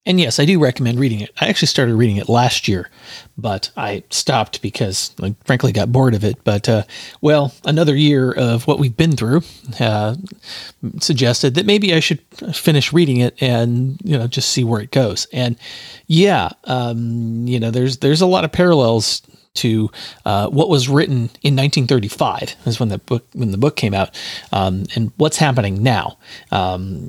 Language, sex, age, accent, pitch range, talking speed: English, male, 40-59, American, 110-145 Hz, 185 wpm